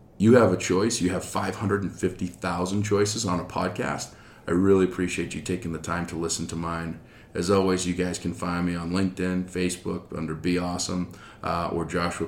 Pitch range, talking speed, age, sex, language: 90-100 Hz, 185 wpm, 40-59, male, English